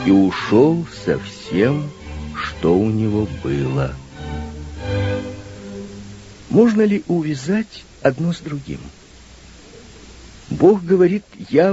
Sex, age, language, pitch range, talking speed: male, 50-69, Russian, 95-150 Hz, 85 wpm